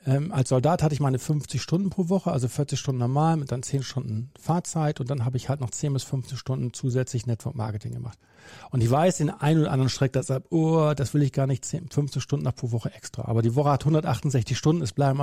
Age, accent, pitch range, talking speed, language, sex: 40-59, German, 125-155 Hz, 240 wpm, German, male